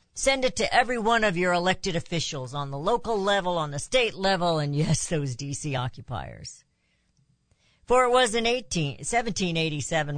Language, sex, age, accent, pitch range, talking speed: English, female, 60-79, American, 140-180 Hz, 160 wpm